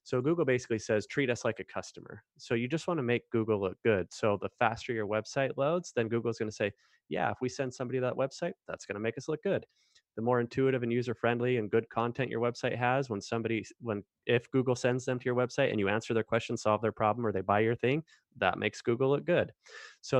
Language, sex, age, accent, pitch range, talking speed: English, male, 20-39, American, 105-125 Hz, 245 wpm